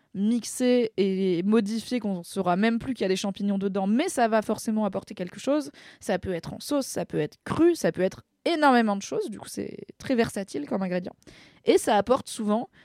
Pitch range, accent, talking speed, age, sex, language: 190-235 Hz, French, 220 wpm, 20-39, female, French